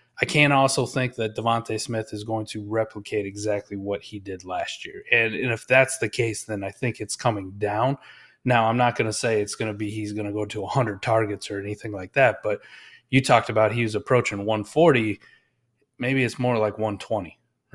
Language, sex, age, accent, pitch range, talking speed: English, male, 30-49, American, 105-130 Hz, 215 wpm